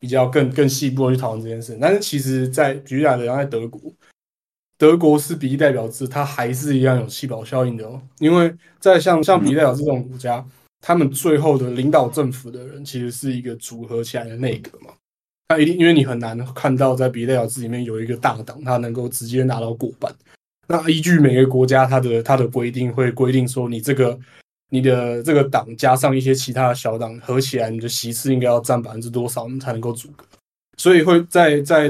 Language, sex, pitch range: Chinese, male, 120-140 Hz